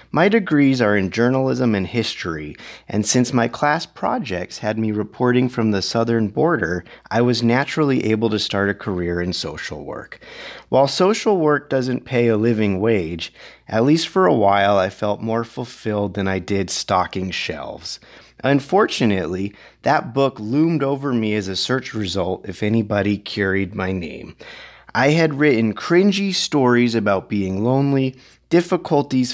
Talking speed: 155 wpm